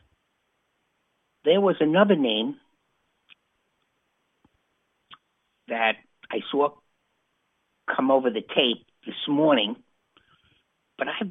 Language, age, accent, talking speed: English, 50-69, American, 85 wpm